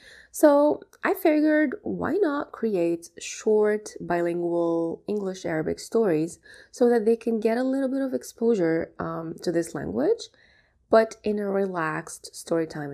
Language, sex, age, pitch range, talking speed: English, female, 20-39, 155-200 Hz, 135 wpm